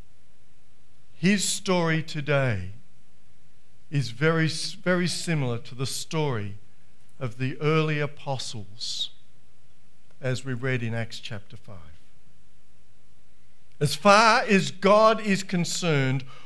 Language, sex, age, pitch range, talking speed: English, male, 50-69, 115-165 Hz, 100 wpm